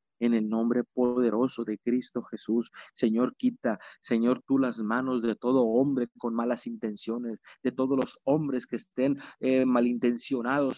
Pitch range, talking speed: 120-145 Hz, 150 wpm